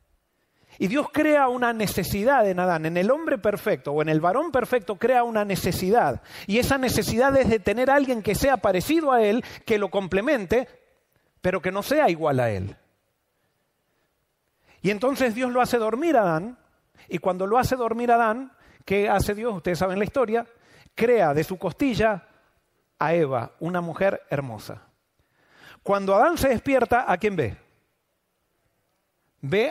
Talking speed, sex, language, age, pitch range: 170 wpm, male, Spanish, 40-59, 195-285 Hz